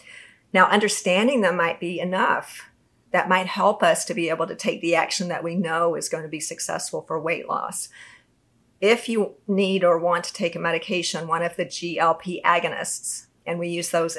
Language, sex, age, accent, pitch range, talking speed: English, female, 40-59, American, 165-195 Hz, 190 wpm